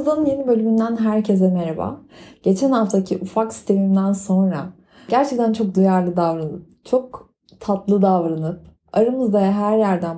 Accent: native